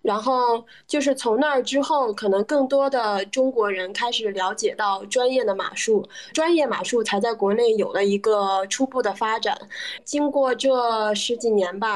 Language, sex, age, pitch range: Chinese, female, 20-39, 210-270 Hz